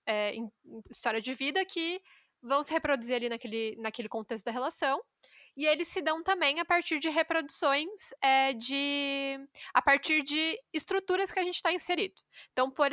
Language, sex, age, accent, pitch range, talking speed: Portuguese, female, 10-29, Brazilian, 240-320 Hz, 175 wpm